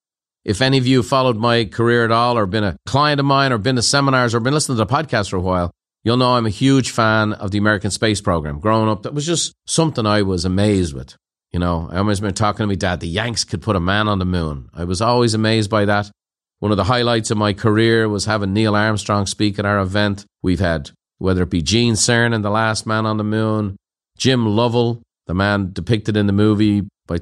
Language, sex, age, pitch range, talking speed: English, male, 40-59, 95-120 Hz, 240 wpm